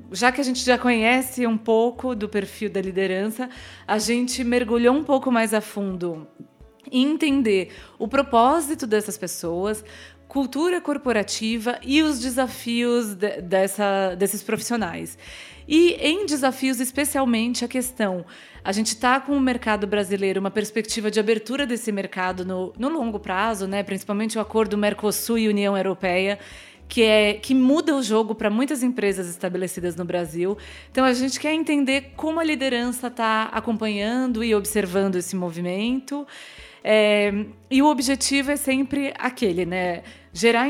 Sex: female